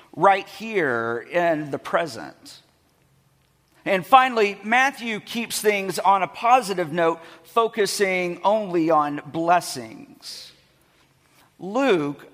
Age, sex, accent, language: 50-69, male, American, English